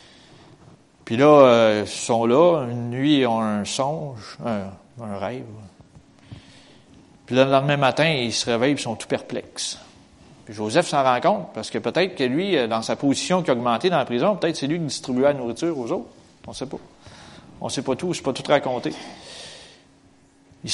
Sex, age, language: male, 30-49, French